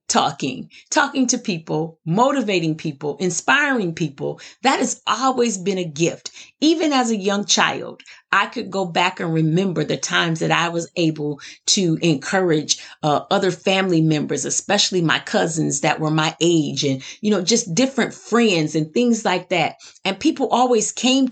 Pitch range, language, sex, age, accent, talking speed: 165-245 Hz, English, female, 30-49, American, 165 wpm